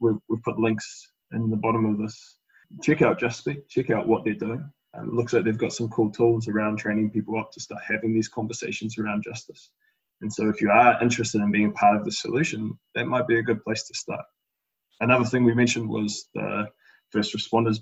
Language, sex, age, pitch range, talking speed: English, male, 20-39, 110-120 Hz, 210 wpm